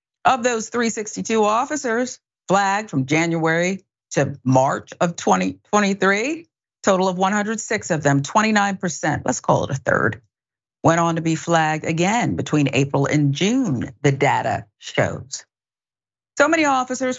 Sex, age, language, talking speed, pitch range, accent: female, 40-59, English, 135 wpm, 145-225 Hz, American